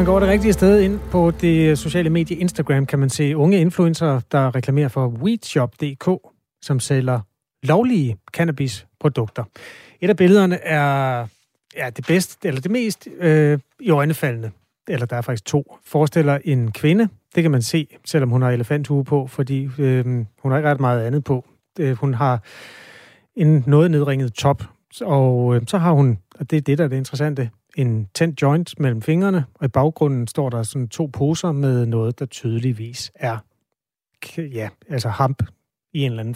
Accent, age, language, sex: native, 30-49, Danish, male